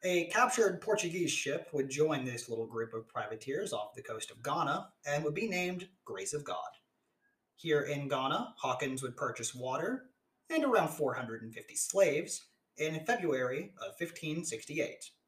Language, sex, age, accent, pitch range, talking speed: English, male, 30-49, American, 130-170 Hz, 150 wpm